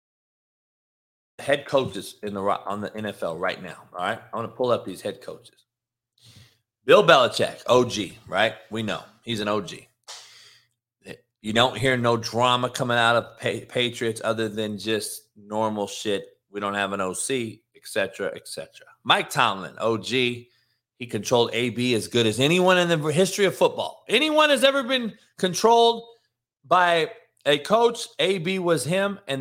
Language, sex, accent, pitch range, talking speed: English, male, American, 115-155 Hz, 160 wpm